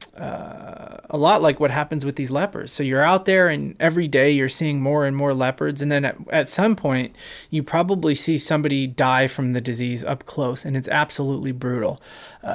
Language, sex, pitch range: English, male, 135-170 Hz